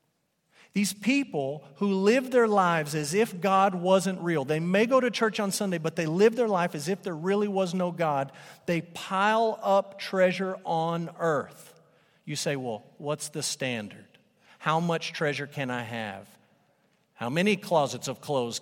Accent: American